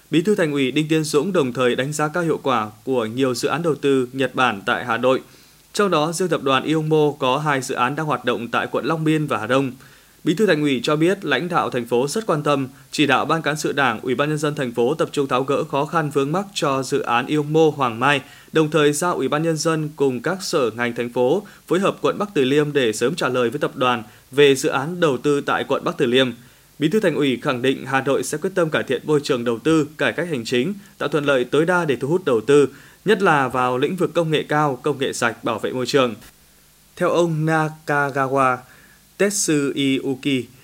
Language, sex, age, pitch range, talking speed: Vietnamese, male, 20-39, 130-155 Hz, 250 wpm